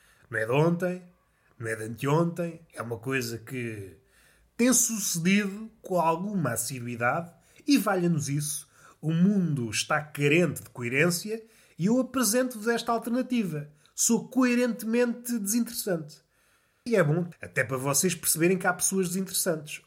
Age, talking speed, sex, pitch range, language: 30-49, 135 wpm, male, 140-200 Hz, Portuguese